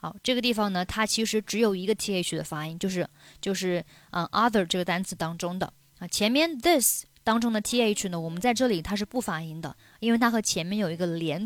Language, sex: Chinese, female